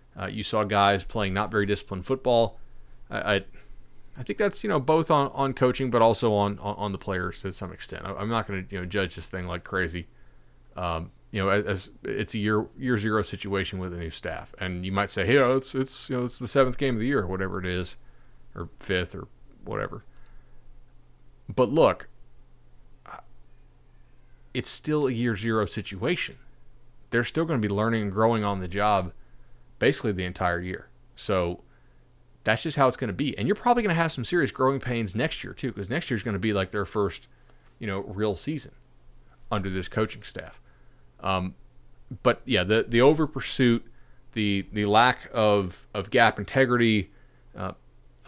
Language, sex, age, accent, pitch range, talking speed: English, male, 30-49, American, 95-125 Hz, 195 wpm